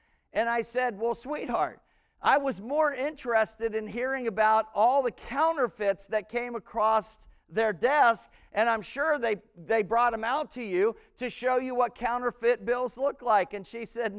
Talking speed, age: 175 wpm, 50-69